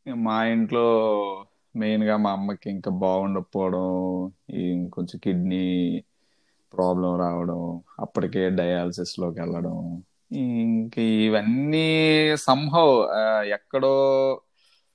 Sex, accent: male, native